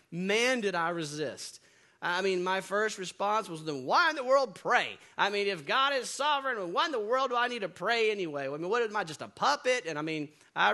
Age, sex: 30-49, male